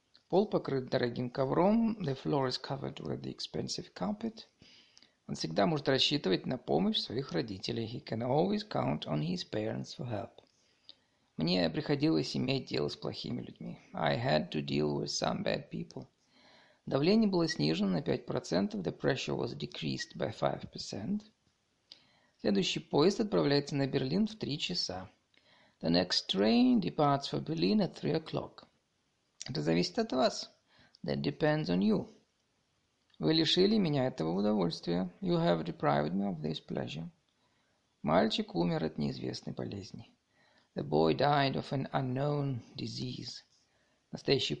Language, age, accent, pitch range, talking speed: Russian, 50-69, native, 120-190 Hz, 140 wpm